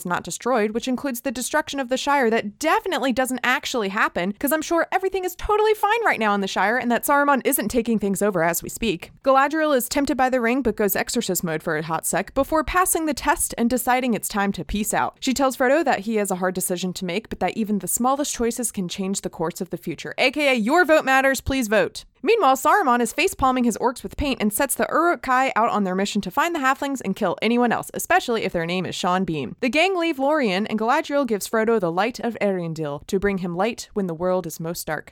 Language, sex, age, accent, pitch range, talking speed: English, female, 20-39, American, 195-280 Hz, 245 wpm